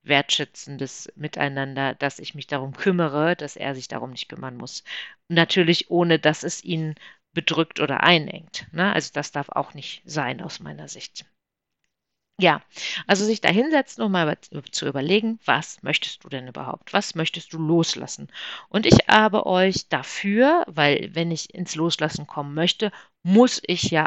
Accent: German